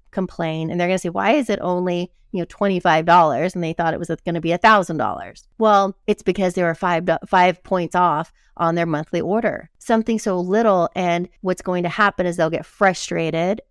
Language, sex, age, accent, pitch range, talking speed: English, female, 30-49, American, 175-220 Hz, 200 wpm